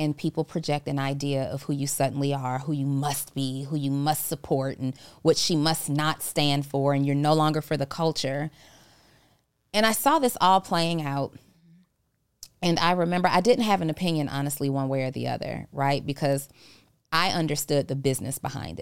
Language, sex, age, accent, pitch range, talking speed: English, female, 30-49, American, 140-155 Hz, 190 wpm